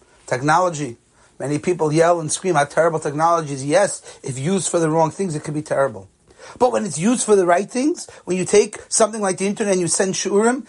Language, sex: English, male